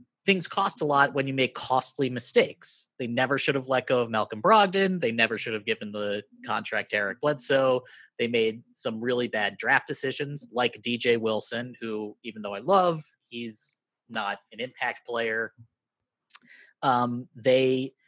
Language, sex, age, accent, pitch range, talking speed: English, male, 30-49, American, 115-140 Hz, 165 wpm